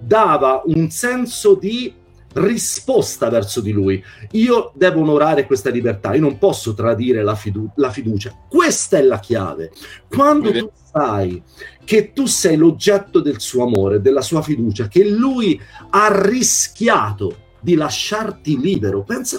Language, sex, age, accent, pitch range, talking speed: Italian, male, 40-59, native, 135-220 Hz, 140 wpm